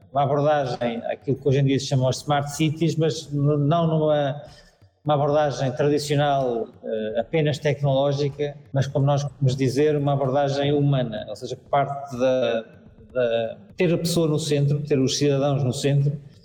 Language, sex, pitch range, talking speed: Portuguese, male, 130-150 Hz, 155 wpm